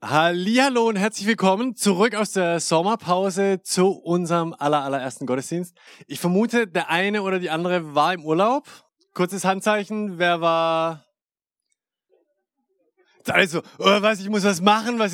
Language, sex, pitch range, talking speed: German, male, 150-200 Hz, 140 wpm